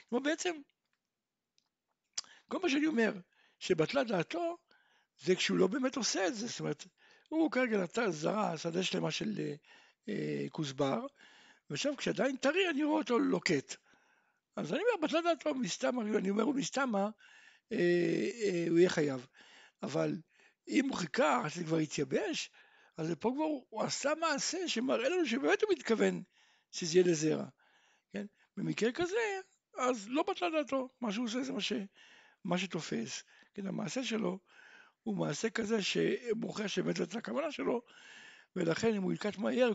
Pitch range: 185-310 Hz